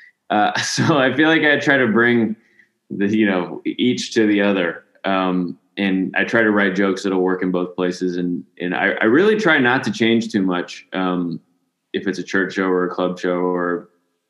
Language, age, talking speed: English, 20-39, 210 wpm